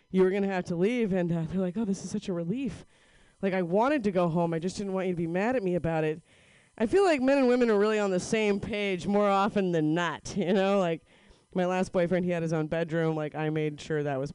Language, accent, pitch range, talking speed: English, American, 175-240 Hz, 285 wpm